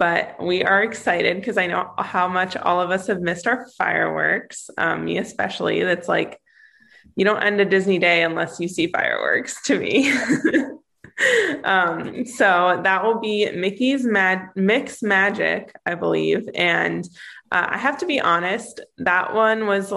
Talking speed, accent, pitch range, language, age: 160 wpm, American, 180-235 Hz, English, 20-39